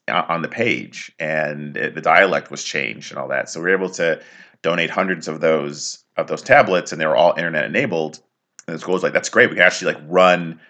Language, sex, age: English, male, 30-49